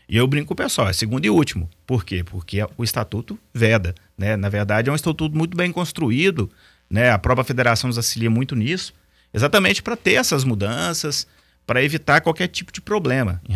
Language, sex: Portuguese, male